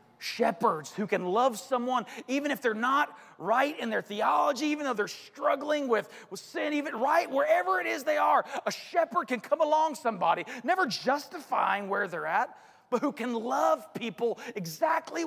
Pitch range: 215-310 Hz